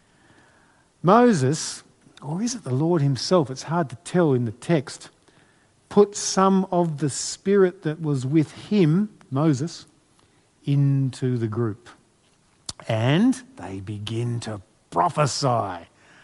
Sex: male